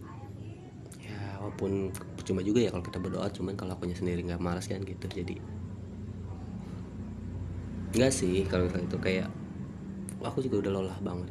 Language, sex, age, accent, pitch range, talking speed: Indonesian, male, 20-39, native, 90-110 Hz, 140 wpm